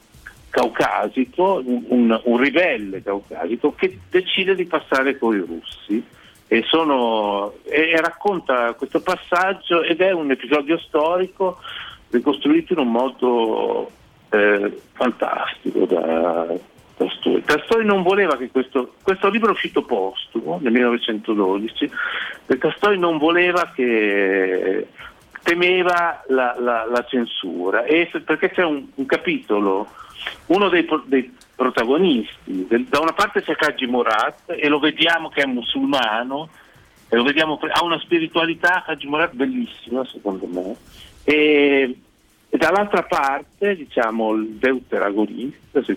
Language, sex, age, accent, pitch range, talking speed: Italian, male, 50-69, native, 120-170 Hz, 130 wpm